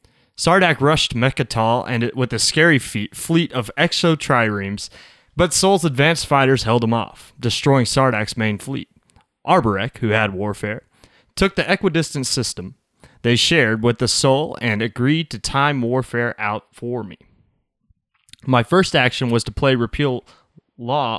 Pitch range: 115-145 Hz